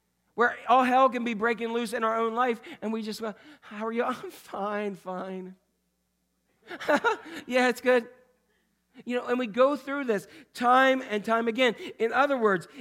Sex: male